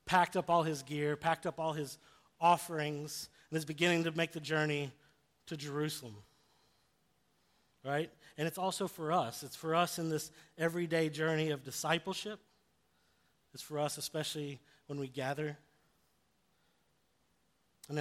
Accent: American